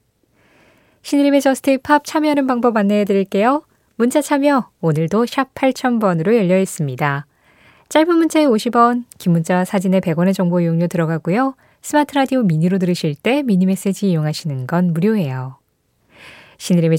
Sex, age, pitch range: female, 20-39, 165-230 Hz